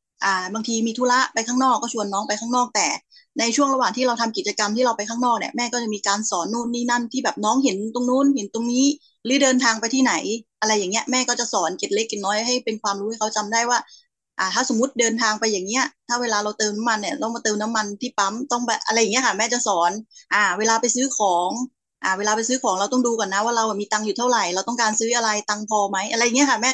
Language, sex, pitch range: Thai, female, 205-245 Hz